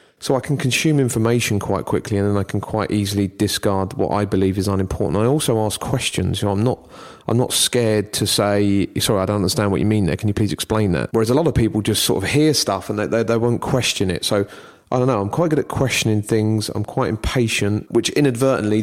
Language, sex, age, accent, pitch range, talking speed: English, male, 30-49, British, 100-120 Hz, 245 wpm